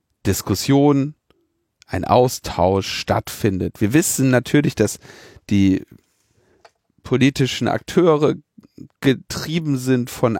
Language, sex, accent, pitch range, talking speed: German, male, German, 105-140 Hz, 80 wpm